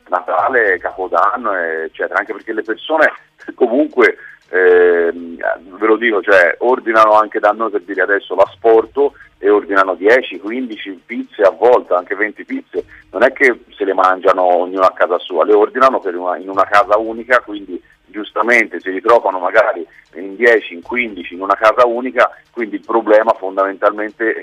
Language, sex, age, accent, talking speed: Italian, male, 40-59, native, 160 wpm